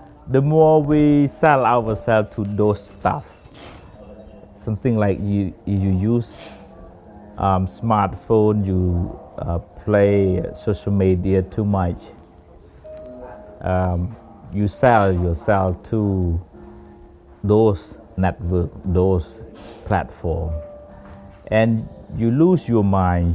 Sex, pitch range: male, 90-120 Hz